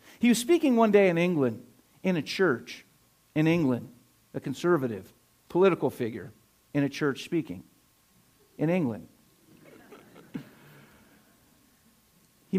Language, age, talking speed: English, 50-69, 110 wpm